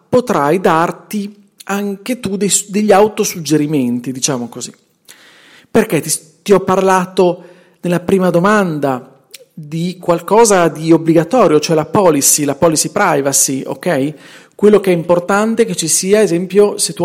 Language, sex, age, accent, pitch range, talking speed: Italian, male, 40-59, native, 145-190 Hz, 135 wpm